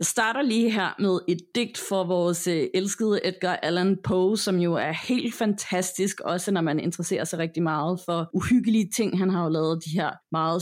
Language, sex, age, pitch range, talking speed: Danish, female, 30-49, 170-220 Hz, 200 wpm